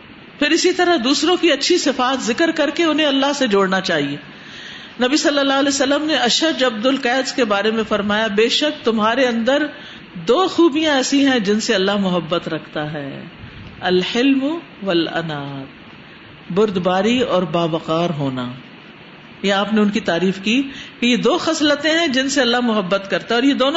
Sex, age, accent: female, 50-69, Indian